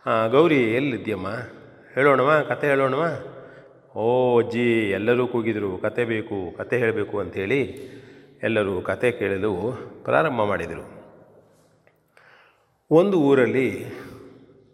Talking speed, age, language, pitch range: 90 wpm, 30-49, Kannada, 110-130 Hz